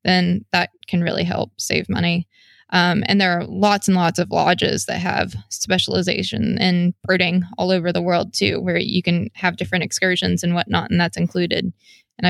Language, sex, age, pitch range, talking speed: English, female, 20-39, 175-200 Hz, 185 wpm